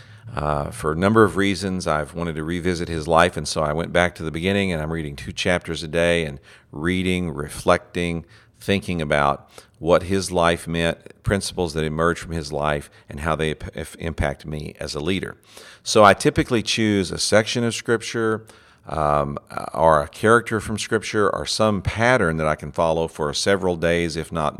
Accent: American